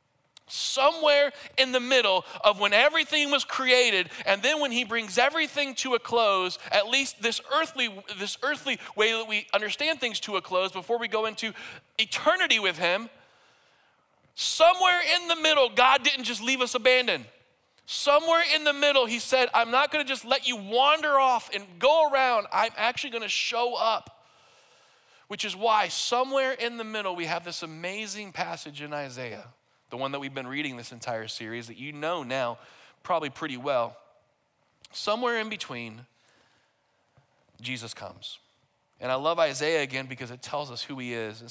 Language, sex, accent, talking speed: English, male, American, 170 wpm